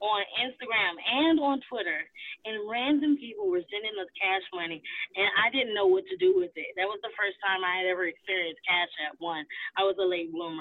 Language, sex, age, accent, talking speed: English, female, 20-39, American, 220 wpm